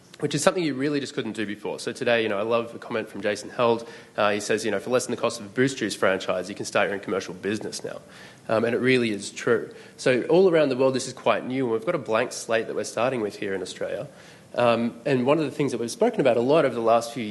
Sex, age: male, 20-39